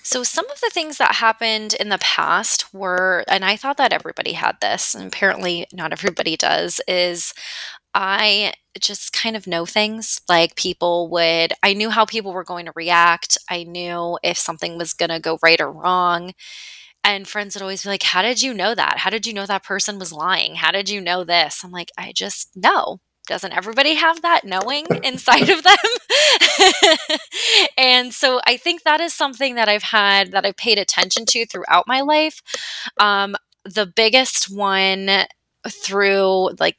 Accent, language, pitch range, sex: American, English, 180-255 Hz, female